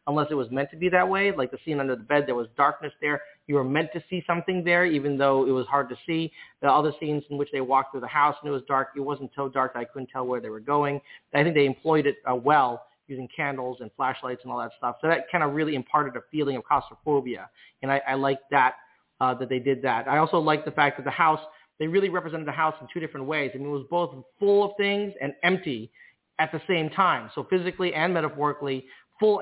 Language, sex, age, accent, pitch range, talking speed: English, male, 40-59, American, 135-160 Hz, 265 wpm